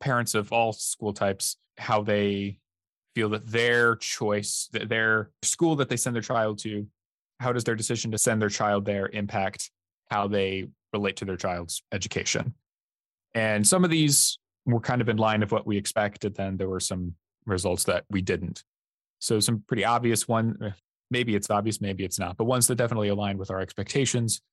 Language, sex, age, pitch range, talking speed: English, male, 20-39, 100-120 Hz, 185 wpm